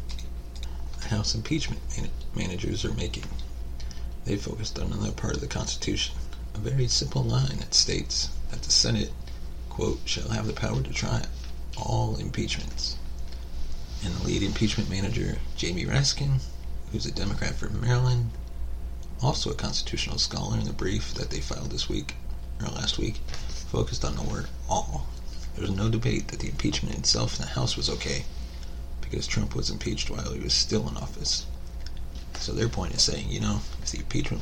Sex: male